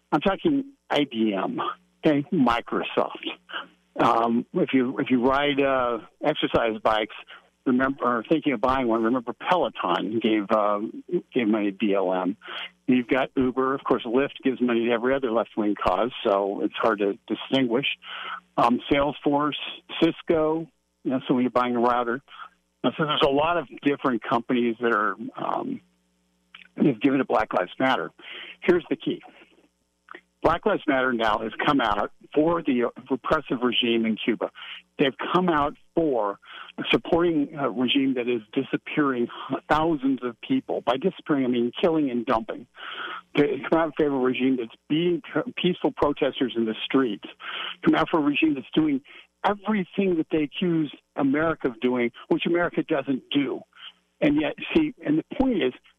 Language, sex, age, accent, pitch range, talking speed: English, male, 60-79, American, 115-160 Hz, 160 wpm